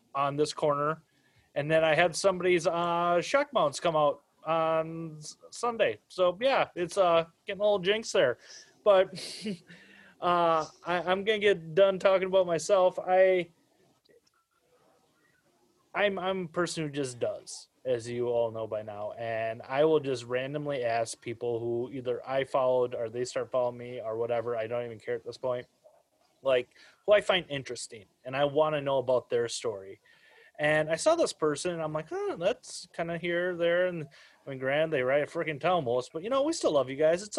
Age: 20-39